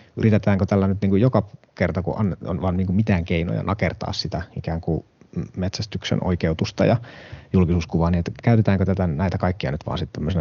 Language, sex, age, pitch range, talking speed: Finnish, male, 30-49, 90-110 Hz, 175 wpm